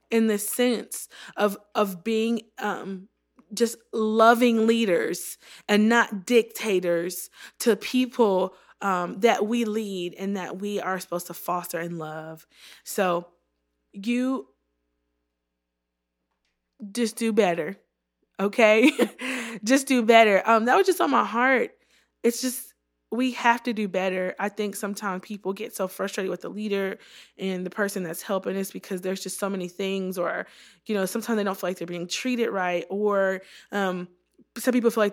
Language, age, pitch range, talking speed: English, 20-39, 185-230 Hz, 155 wpm